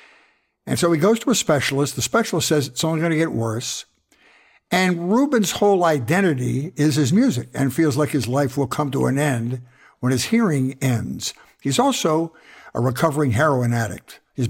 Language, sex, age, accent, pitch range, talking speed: English, male, 60-79, American, 130-170 Hz, 180 wpm